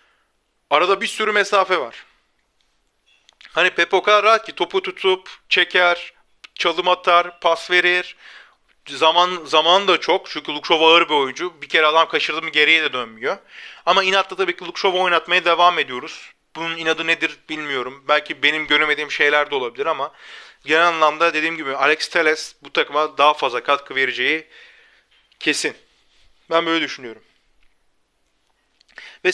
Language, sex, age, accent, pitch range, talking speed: Turkish, male, 40-59, native, 155-190 Hz, 140 wpm